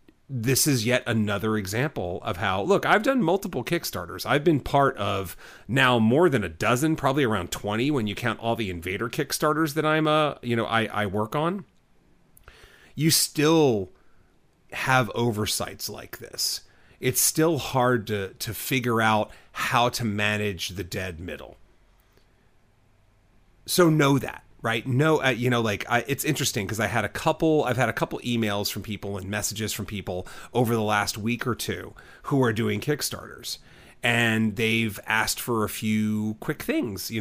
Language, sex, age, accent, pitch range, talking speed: English, male, 40-59, American, 105-135 Hz, 170 wpm